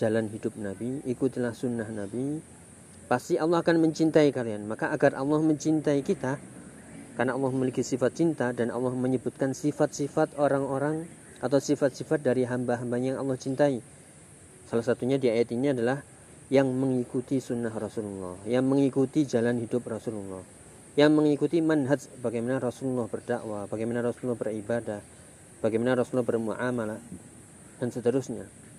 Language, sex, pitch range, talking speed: Indonesian, male, 115-140 Hz, 130 wpm